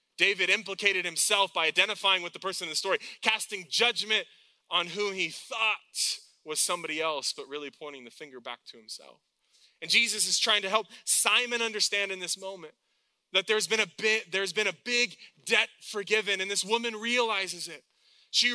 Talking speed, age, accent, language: 180 wpm, 20-39, American, English